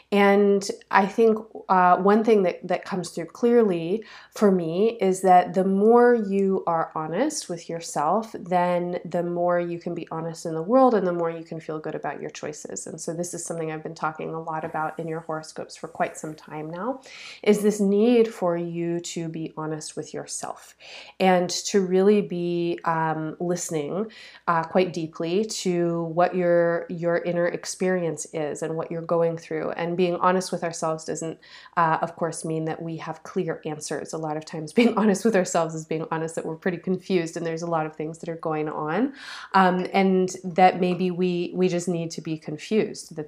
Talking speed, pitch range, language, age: 200 wpm, 160-190 Hz, English, 30-49